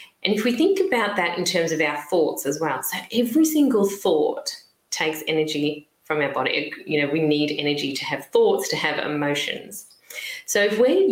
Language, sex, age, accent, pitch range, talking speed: English, female, 30-49, Australian, 160-240 Hz, 195 wpm